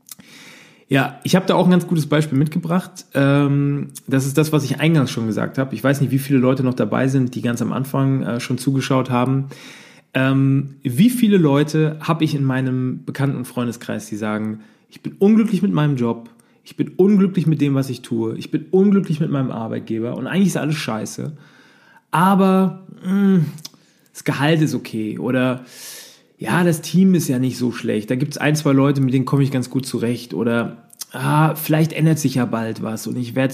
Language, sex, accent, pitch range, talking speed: German, male, German, 125-155 Hz, 195 wpm